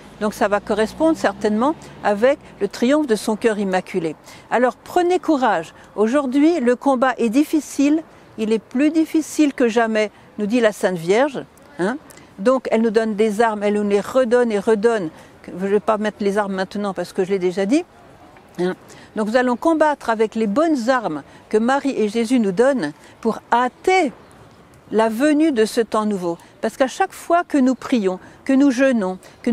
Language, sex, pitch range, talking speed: French, female, 210-290 Hz, 185 wpm